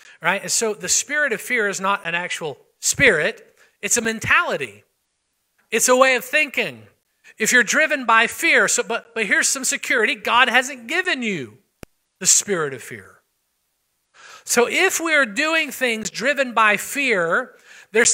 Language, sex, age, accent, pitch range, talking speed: English, male, 50-69, American, 205-285 Hz, 160 wpm